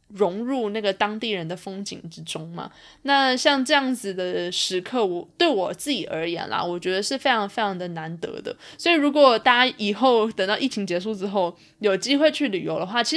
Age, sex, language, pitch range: 20-39, female, Chinese, 190-265 Hz